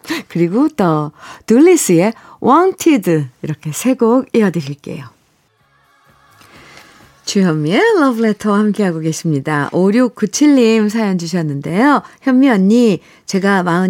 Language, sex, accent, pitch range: Korean, female, native, 175-235 Hz